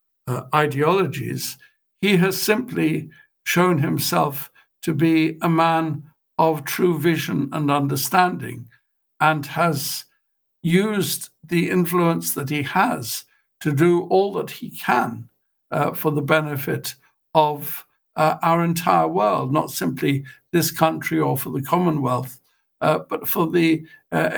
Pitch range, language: 145-170 Hz, English